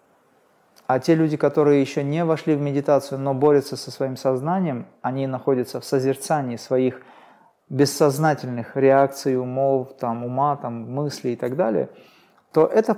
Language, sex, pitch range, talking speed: Russian, male, 125-150 Hz, 135 wpm